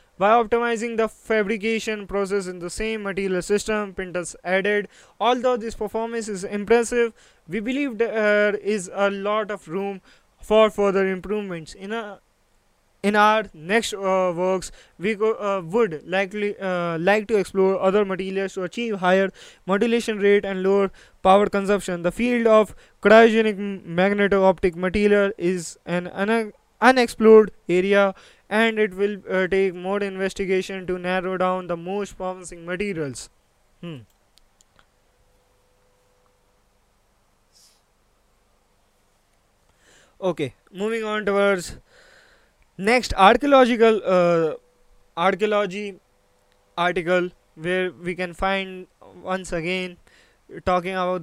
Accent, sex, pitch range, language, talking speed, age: Indian, male, 180-215 Hz, English, 110 wpm, 20-39